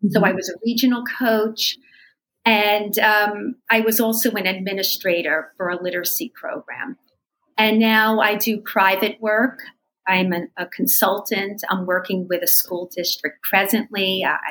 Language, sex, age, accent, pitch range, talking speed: English, female, 40-59, American, 180-220 Hz, 145 wpm